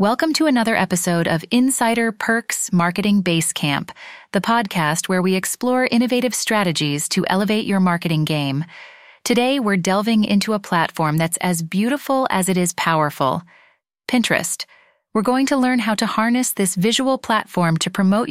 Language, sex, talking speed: English, female, 155 wpm